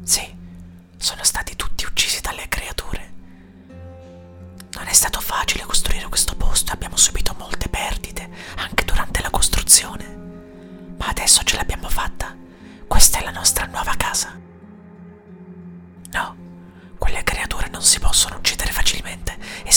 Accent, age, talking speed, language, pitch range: native, 30-49, 130 wpm, Italian, 85-90 Hz